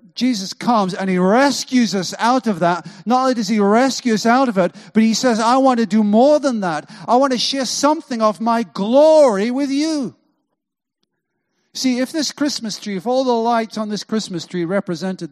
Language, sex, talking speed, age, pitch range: English, male, 205 wpm, 50-69, 155-225 Hz